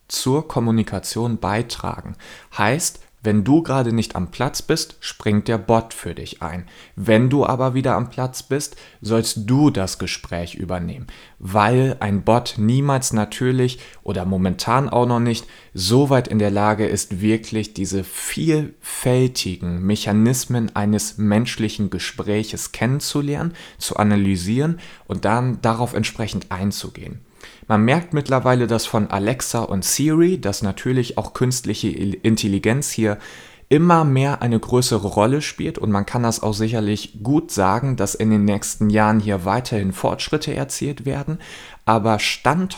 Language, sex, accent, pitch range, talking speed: German, male, German, 100-130 Hz, 140 wpm